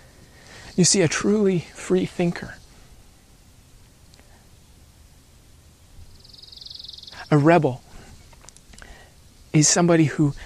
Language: English